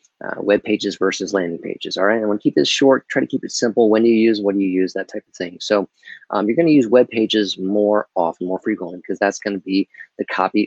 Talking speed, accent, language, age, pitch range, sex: 275 wpm, American, English, 30-49, 95-115 Hz, male